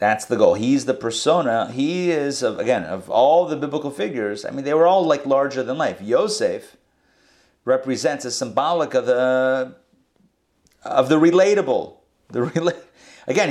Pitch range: 120-150 Hz